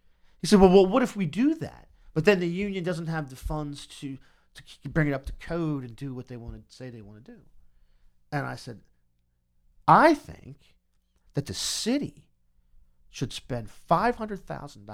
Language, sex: English, male